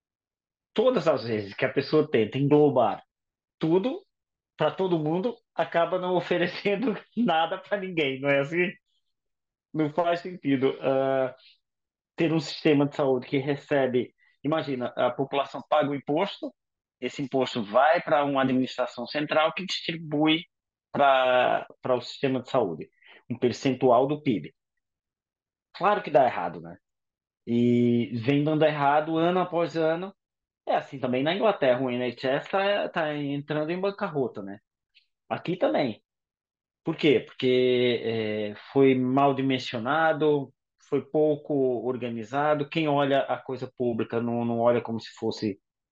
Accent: Brazilian